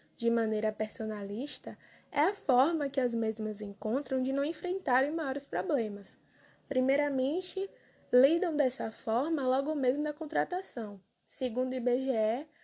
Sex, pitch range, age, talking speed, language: female, 220-285 Hz, 10-29, 125 wpm, Portuguese